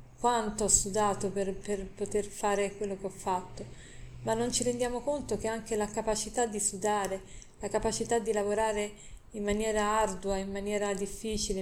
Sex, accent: female, native